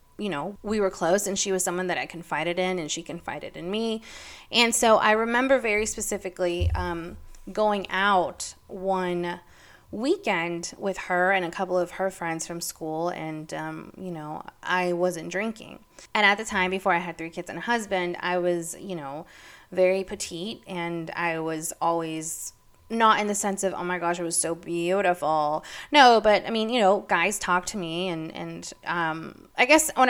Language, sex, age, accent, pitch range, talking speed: English, female, 20-39, American, 170-205 Hz, 190 wpm